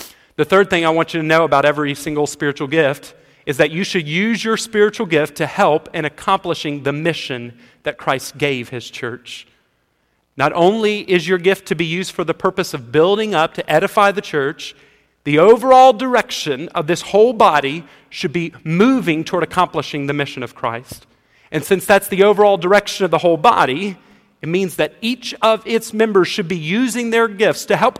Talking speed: 195 wpm